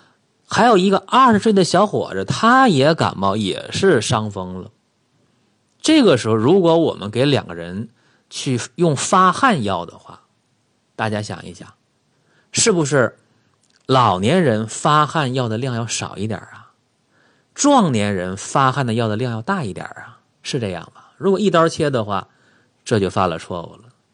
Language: Chinese